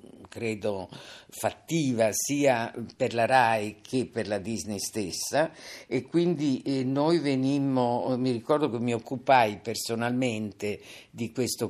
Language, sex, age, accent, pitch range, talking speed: Italian, female, 50-69, native, 110-130 Hz, 120 wpm